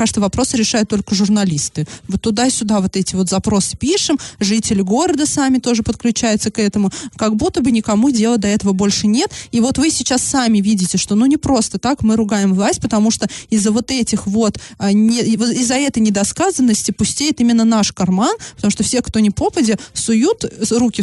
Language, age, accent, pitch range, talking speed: Russian, 20-39, native, 205-250 Hz, 185 wpm